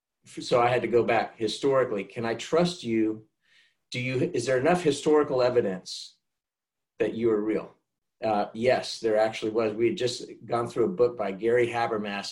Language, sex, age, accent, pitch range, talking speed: English, male, 50-69, American, 105-125 Hz, 180 wpm